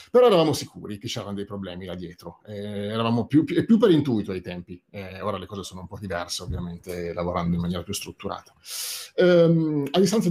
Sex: male